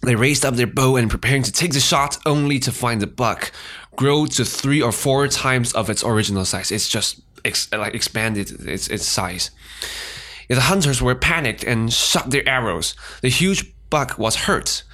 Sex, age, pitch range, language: male, 20-39, 110-135 Hz, English